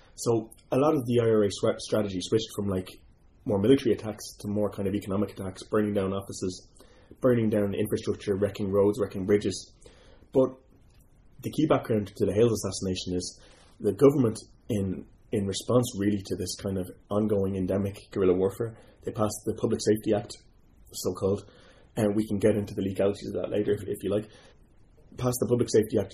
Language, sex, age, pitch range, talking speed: English, male, 20-39, 95-115 Hz, 180 wpm